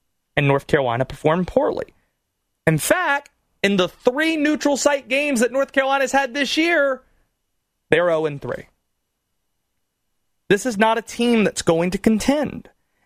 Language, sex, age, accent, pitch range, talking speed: English, male, 30-49, American, 150-200 Hz, 145 wpm